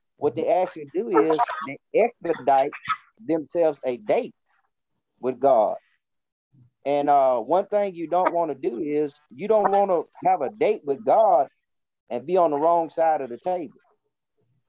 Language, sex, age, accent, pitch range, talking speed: English, male, 40-59, American, 155-250 Hz, 165 wpm